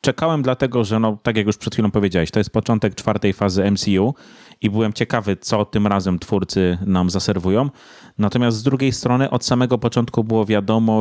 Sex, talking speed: male, 185 wpm